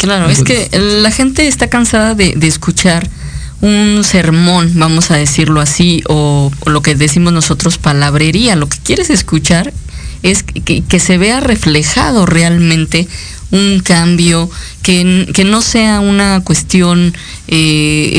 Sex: female